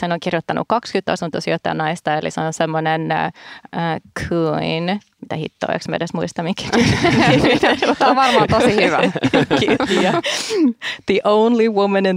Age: 30-49